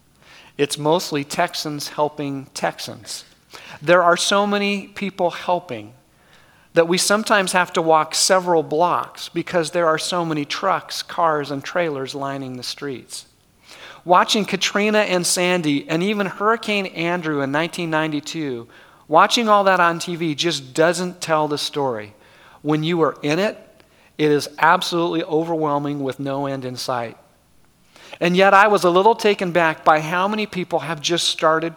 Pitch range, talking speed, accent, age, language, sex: 150-185 Hz, 150 wpm, American, 40-59, English, male